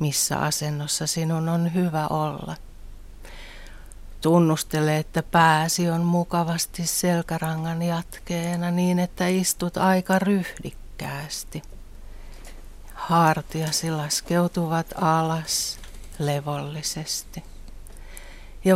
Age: 60-79